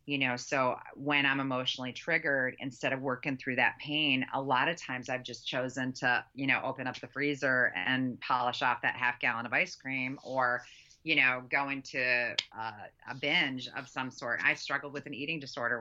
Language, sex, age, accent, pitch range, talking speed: English, female, 30-49, American, 125-145 Hz, 200 wpm